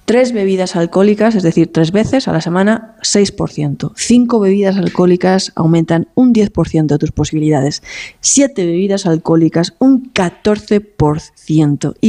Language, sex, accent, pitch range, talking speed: Spanish, female, Spanish, 165-215 Hz, 125 wpm